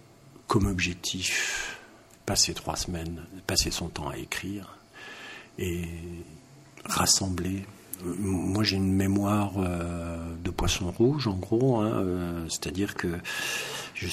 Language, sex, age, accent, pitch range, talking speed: French, male, 50-69, French, 85-100 Hz, 115 wpm